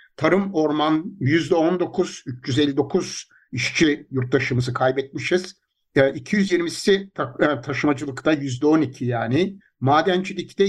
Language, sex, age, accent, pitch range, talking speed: Turkish, male, 60-79, native, 135-180 Hz, 65 wpm